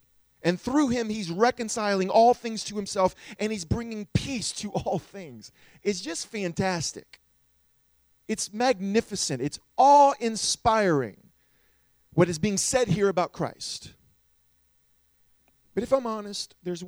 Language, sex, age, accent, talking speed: English, male, 40-59, American, 125 wpm